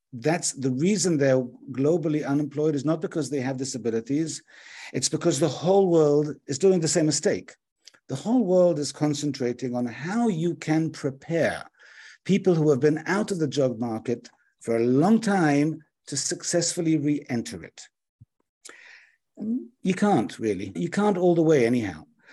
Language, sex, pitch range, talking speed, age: English, male, 135-175 Hz, 155 wpm, 50-69